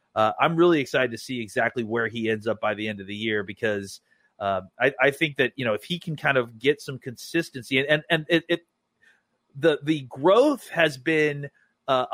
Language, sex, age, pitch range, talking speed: English, male, 30-49, 130-160 Hz, 215 wpm